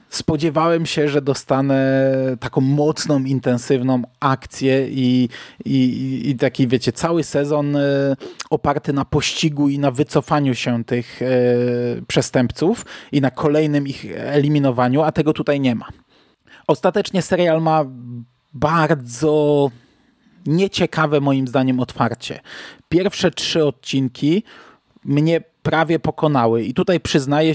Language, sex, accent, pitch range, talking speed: Polish, male, native, 130-160 Hz, 110 wpm